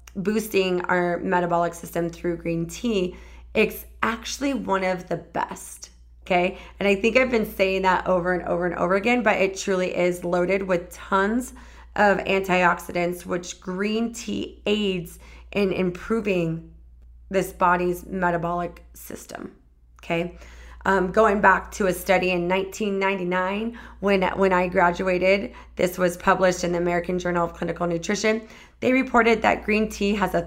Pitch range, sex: 175-200 Hz, female